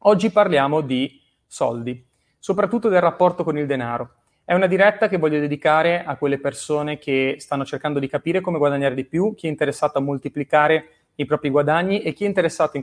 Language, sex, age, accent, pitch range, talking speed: Italian, male, 30-49, native, 135-170 Hz, 190 wpm